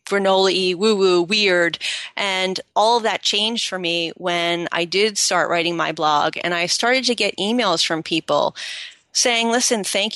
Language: English